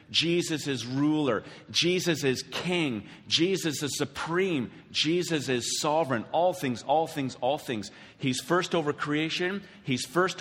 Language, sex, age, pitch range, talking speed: English, male, 40-59, 115-150 Hz, 140 wpm